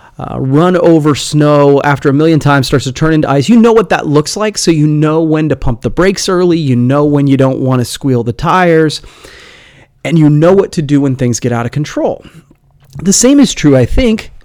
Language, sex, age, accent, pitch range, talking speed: English, male, 30-49, American, 130-175 Hz, 235 wpm